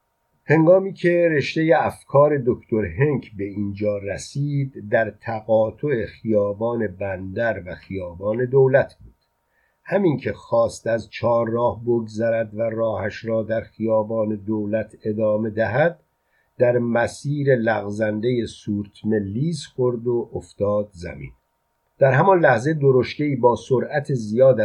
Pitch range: 105-135 Hz